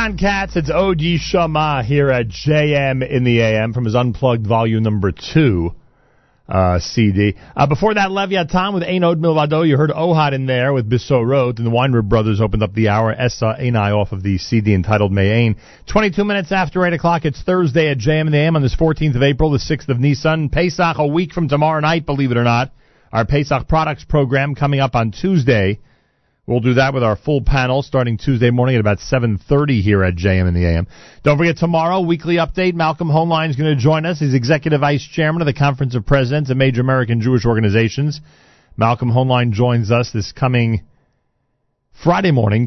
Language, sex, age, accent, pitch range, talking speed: English, male, 40-59, American, 115-155 Hz, 200 wpm